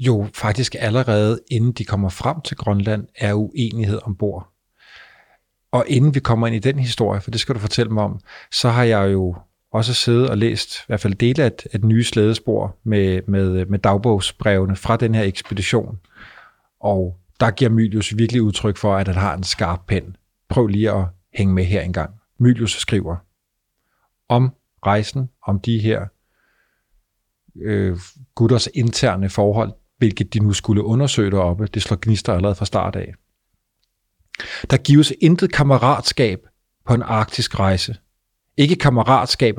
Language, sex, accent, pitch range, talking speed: Danish, male, native, 100-125 Hz, 160 wpm